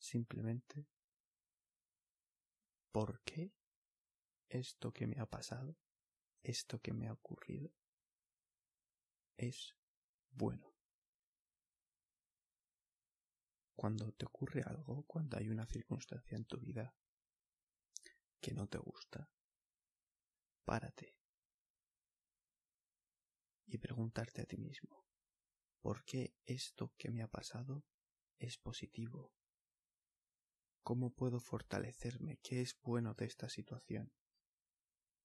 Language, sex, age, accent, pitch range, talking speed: Russian, male, 20-39, Spanish, 110-130 Hz, 90 wpm